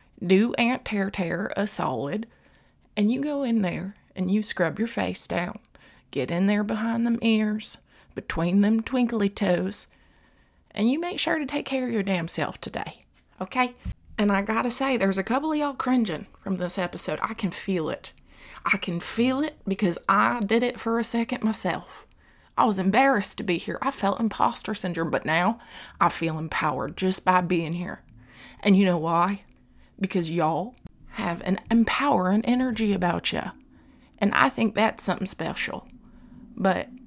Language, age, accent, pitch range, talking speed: English, 20-39, American, 175-230 Hz, 175 wpm